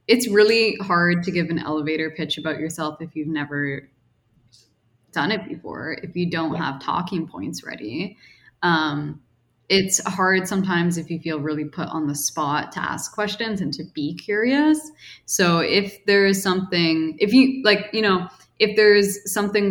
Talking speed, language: 165 wpm, English